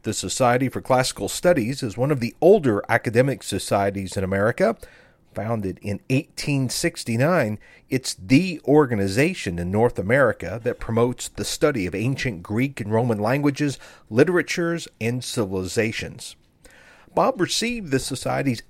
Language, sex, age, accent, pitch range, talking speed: English, male, 40-59, American, 110-155 Hz, 130 wpm